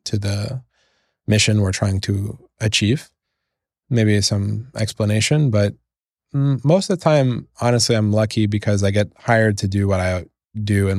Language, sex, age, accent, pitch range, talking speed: English, male, 20-39, American, 100-115 Hz, 155 wpm